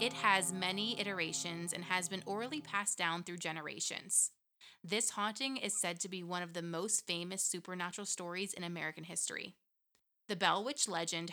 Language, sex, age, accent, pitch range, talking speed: English, female, 20-39, American, 175-210 Hz, 170 wpm